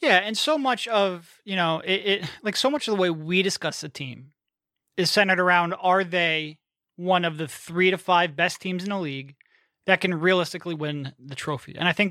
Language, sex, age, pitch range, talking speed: English, male, 30-49, 165-205 Hz, 220 wpm